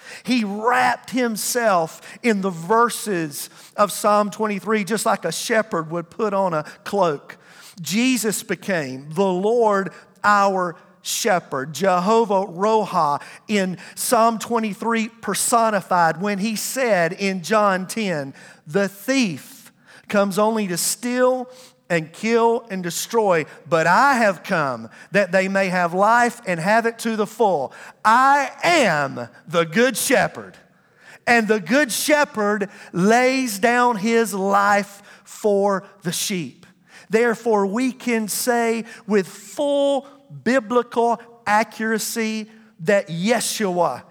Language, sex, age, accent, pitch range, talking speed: English, male, 40-59, American, 185-230 Hz, 115 wpm